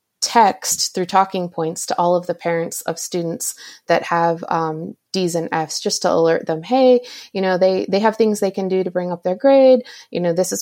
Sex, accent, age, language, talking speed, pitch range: female, American, 30-49, English, 225 wpm, 165-190 Hz